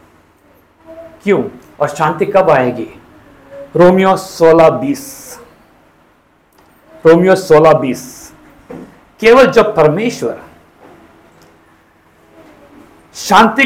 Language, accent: Hindi, native